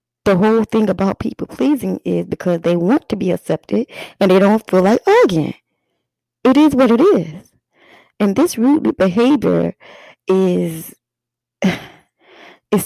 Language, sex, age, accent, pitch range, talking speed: English, female, 20-39, American, 165-220 Hz, 140 wpm